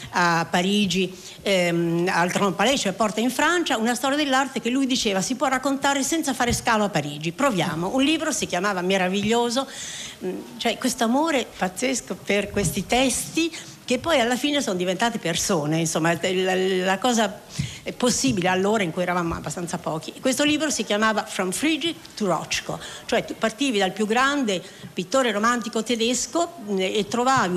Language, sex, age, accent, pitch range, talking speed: Italian, female, 60-79, native, 180-245 Hz, 165 wpm